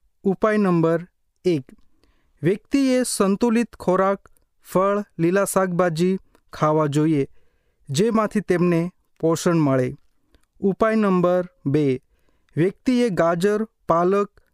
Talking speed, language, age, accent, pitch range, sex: 75 wpm, Hindi, 30-49, native, 160-205 Hz, male